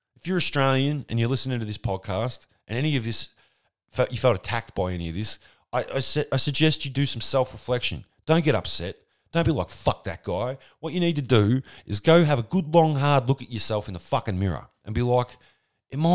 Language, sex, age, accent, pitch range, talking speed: English, male, 30-49, Australian, 110-150 Hz, 225 wpm